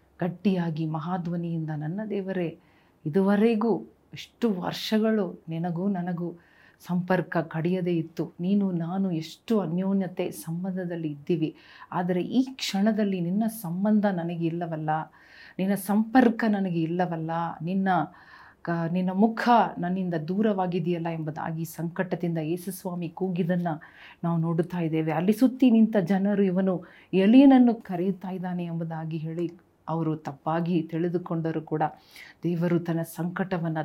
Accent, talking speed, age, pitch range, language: native, 105 wpm, 40-59, 165-195 Hz, Kannada